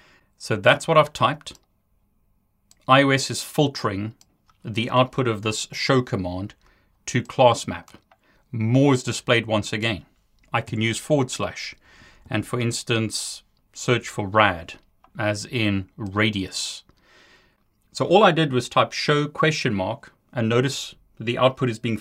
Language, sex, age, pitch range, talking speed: English, male, 30-49, 105-130 Hz, 140 wpm